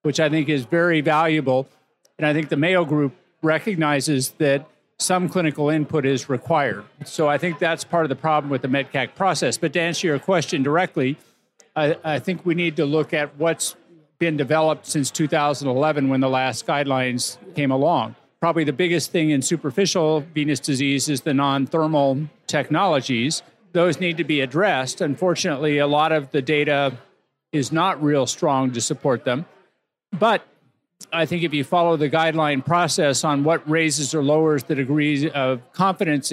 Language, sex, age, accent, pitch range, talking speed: English, male, 50-69, American, 140-165 Hz, 170 wpm